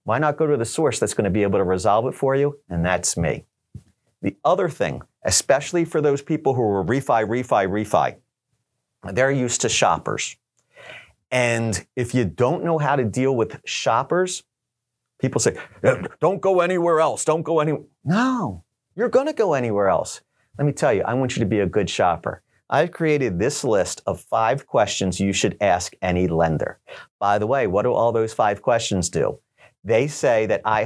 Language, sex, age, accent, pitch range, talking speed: English, male, 40-59, American, 105-155 Hz, 190 wpm